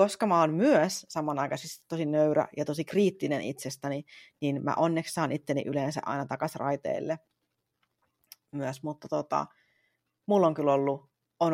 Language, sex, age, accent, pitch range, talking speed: Finnish, female, 30-49, native, 150-180 Hz, 140 wpm